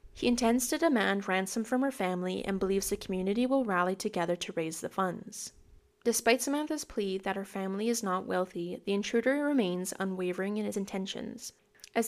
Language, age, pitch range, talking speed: English, 10-29, 190-245 Hz, 180 wpm